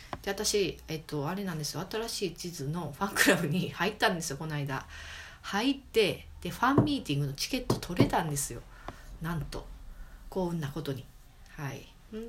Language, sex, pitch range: Japanese, female, 140-185 Hz